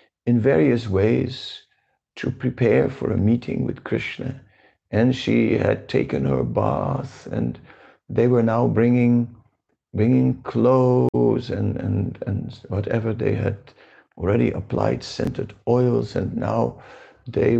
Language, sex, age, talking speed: English, male, 50-69, 125 wpm